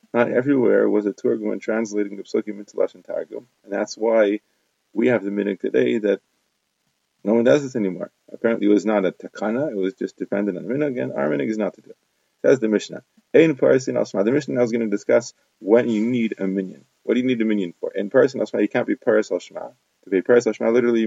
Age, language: 30-49, English